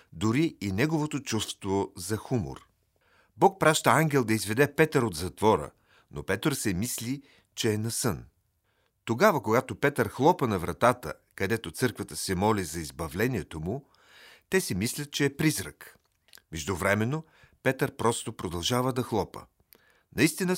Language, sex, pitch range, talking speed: Bulgarian, male, 95-135 Hz, 140 wpm